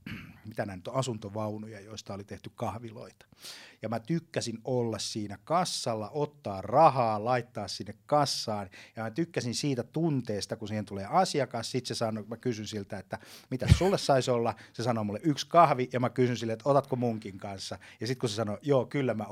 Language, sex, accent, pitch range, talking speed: Finnish, male, native, 105-130 Hz, 185 wpm